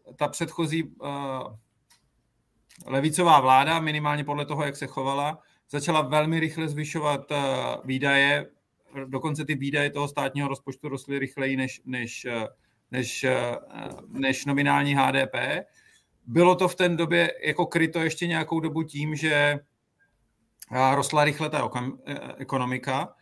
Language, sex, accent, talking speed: Czech, male, native, 120 wpm